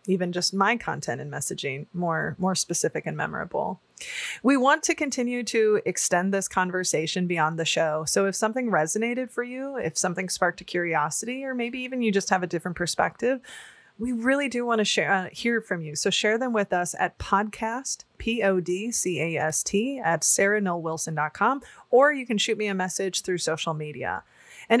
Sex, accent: female, American